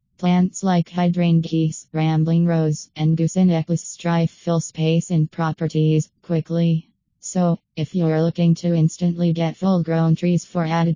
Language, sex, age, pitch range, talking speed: English, female, 20-39, 160-175 Hz, 130 wpm